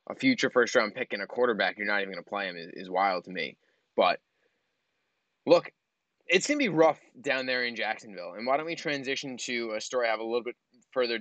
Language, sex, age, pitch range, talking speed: English, male, 20-39, 115-150 Hz, 235 wpm